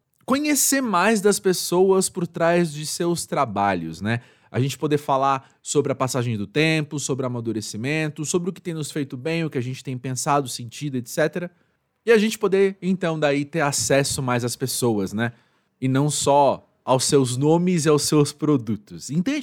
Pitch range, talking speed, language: 125-175 Hz, 180 wpm, Portuguese